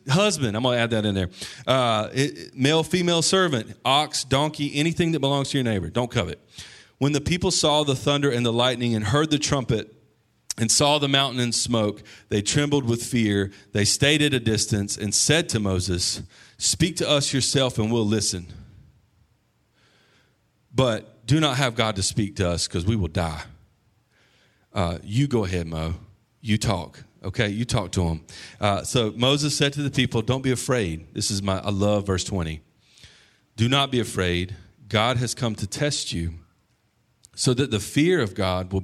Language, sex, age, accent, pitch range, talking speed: English, male, 40-59, American, 100-135 Hz, 180 wpm